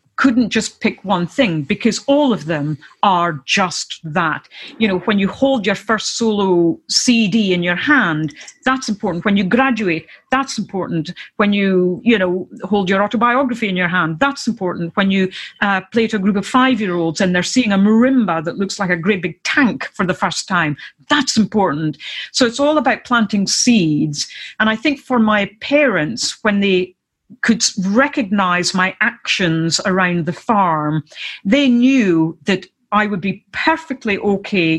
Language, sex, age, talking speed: English, female, 40-59, 170 wpm